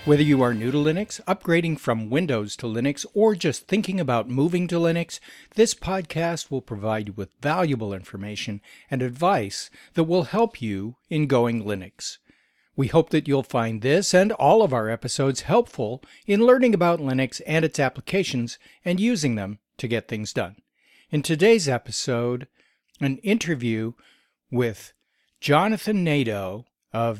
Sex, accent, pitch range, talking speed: male, American, 120-165 Hz, 155 wpm